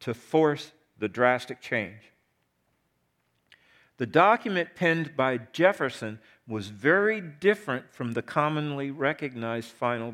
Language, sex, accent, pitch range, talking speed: English, male, American, 110-155 Hz, 105 wpm